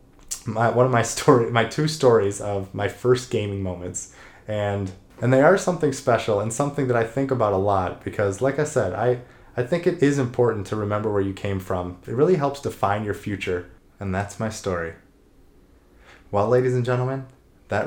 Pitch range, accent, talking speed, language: 95-120 Hz, American, 195 wpm, English